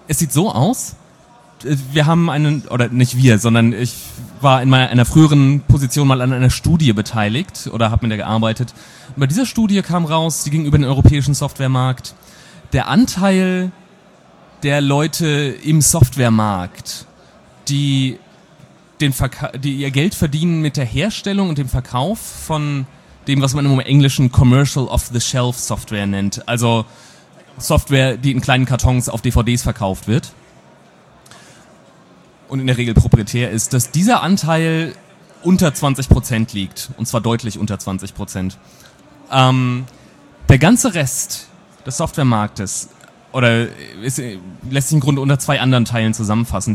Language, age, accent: German, 30-49, German